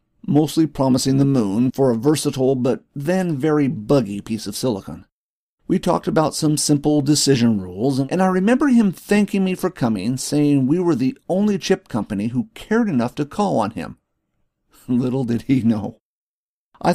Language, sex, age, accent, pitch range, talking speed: English, male, 50-69, American, 115-150 Hz, 170 wpm